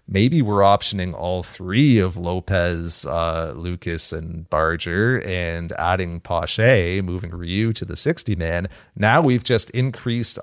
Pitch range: 90-105 Hz